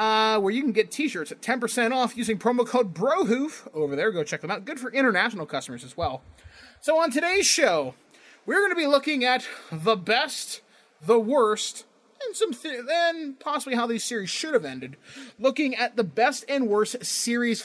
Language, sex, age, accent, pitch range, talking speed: English, male, 20-39, American, 180-255 Hz, 195 wpm